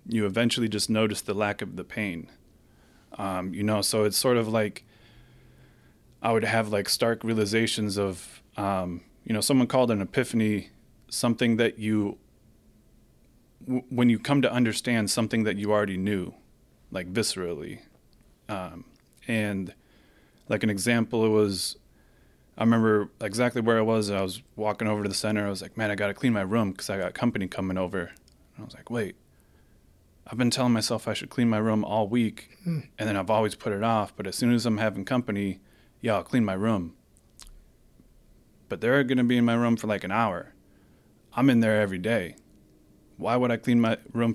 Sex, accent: male, American